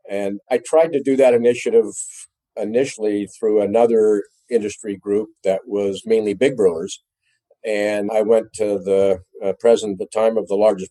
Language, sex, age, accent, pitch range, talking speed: English, male, 50-69, American, 100-135 Hz, 165 wpm